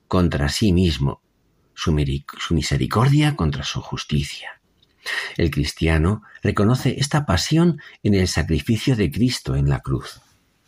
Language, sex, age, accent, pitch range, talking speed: Spanish, male, 50-69, Spanish, 75-110 Hz, 120 wpm